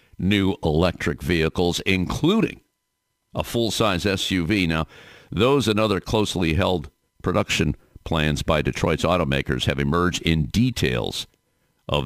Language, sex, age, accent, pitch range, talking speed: English, male, 50-69, American, 75-95 Hz, 115 wpm